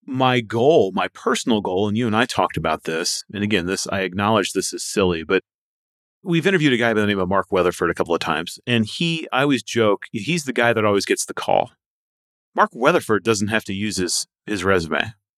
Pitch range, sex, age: 95-125 Hz, male, 30-49